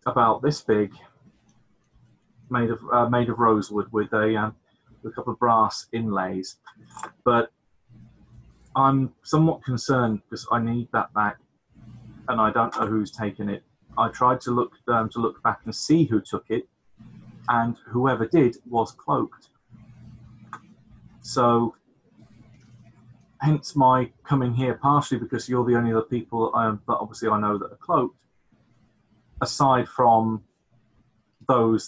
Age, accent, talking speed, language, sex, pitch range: 30-49, British, 140 wpm, English, male, 105-120 Hz